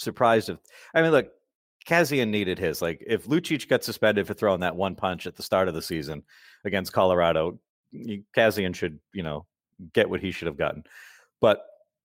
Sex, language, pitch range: male, English, 95-130 Hz